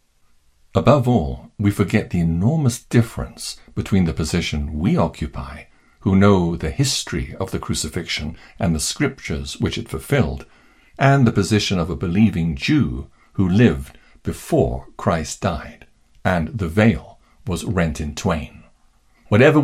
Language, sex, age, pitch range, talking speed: English, male, 60-79, 80-115 Hz, 140 wpm